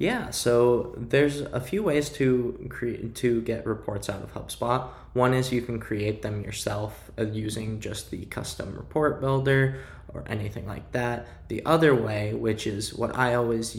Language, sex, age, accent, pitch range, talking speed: English, male, 10-29, American, 105-120 Hz, 170 wpm